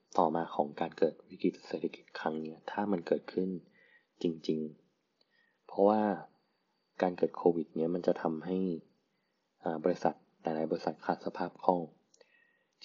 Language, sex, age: Thai, male, 20-39